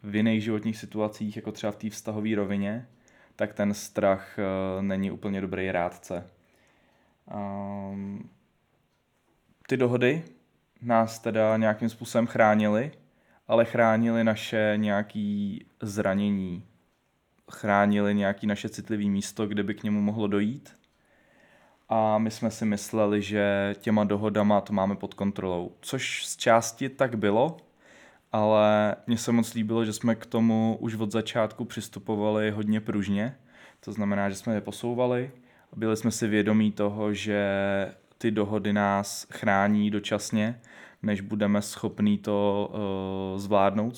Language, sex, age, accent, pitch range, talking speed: Czech, male, 20-39, native, 100-110 Hz, 130 wpm